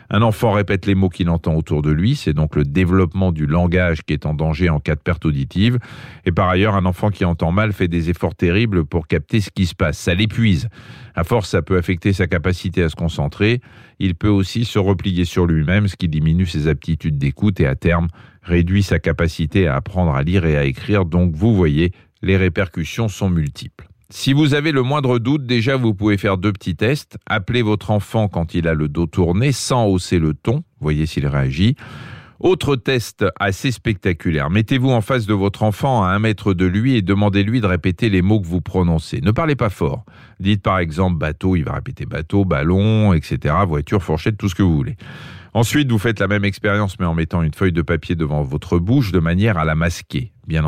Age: 40-59